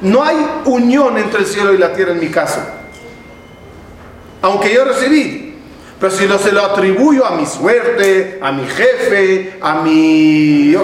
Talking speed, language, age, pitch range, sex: 165 wpm, Spanish, 40-59, 195-255 Hz, male